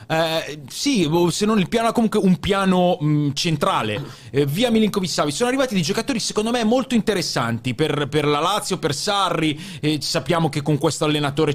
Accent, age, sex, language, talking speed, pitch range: native, 30-49, male, Italian, 180 wpm, 140-195 Hz